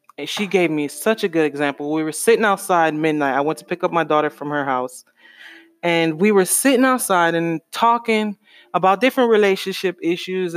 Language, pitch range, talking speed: English, 150-190 Hz, 195 wpm